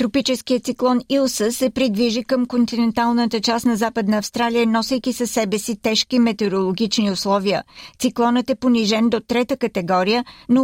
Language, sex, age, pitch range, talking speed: Bulgarian, female, 50-69, 210-245 Hz, 140 wpm